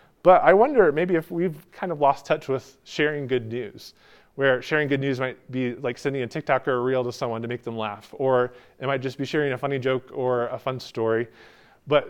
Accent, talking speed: American, 235 wpm